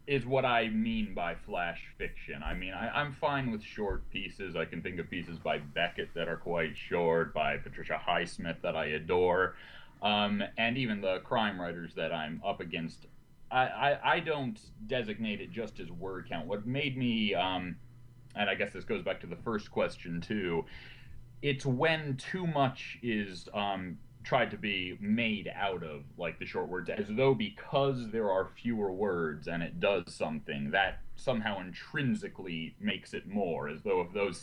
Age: 30-49